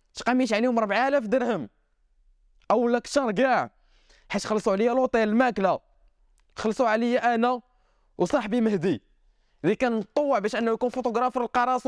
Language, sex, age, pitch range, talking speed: Arabic, male, 20-39, 185-270 Hz, 130 wpm